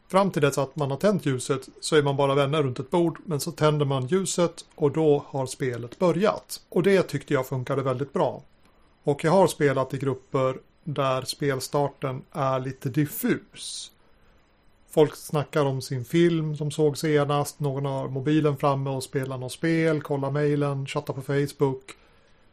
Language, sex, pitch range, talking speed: Swedish, male, 130-155 Hz, 175 wpm